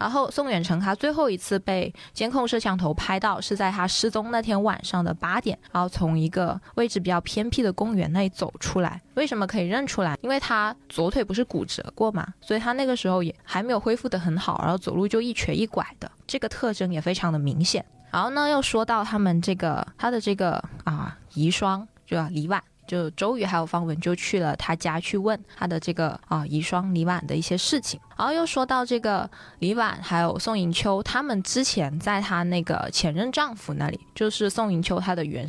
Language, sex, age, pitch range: Chinese, female, 20-39, 170-215 Hz